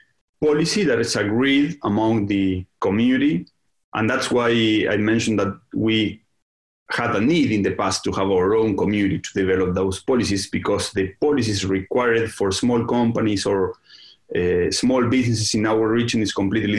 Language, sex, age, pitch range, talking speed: English, male, 30-49, 100-140 Hz, 160 wpm